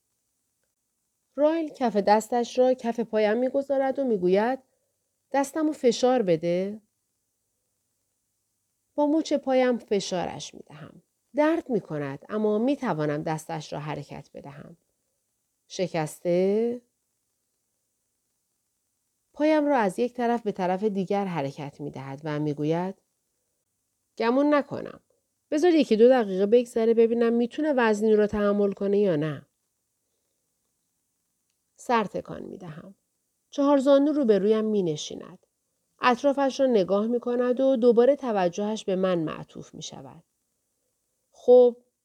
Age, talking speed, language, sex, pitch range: 40-59, 115 wpm, Persian, female, 155-255 Hz